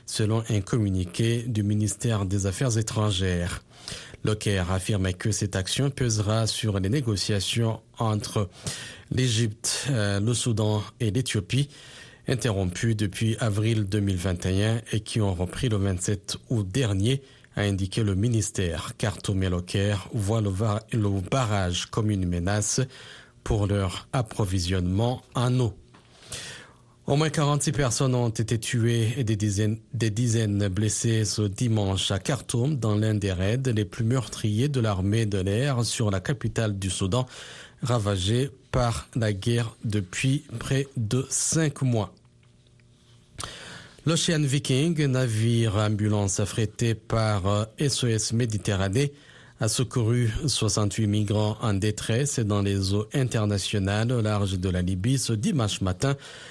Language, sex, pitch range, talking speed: French, male, 100-125 Hz, 125 wpm